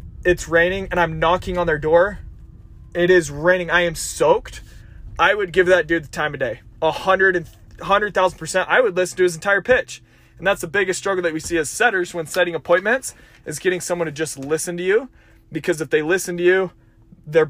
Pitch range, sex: 155-190 Hz, male